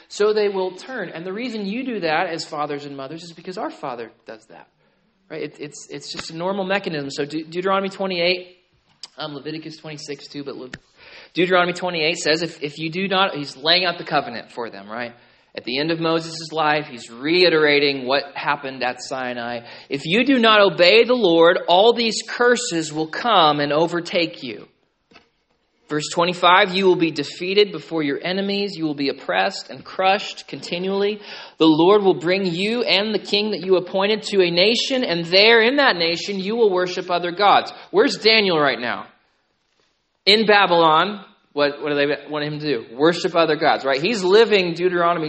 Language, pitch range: English, 150-200 Hz